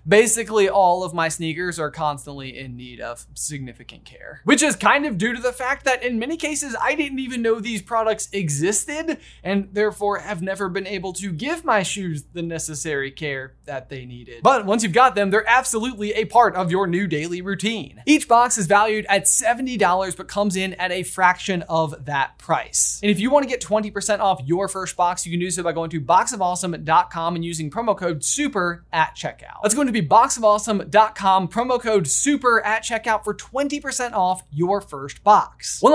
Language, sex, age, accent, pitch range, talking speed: English, male, 20-39, American, 175-235 Hz, 200 wpm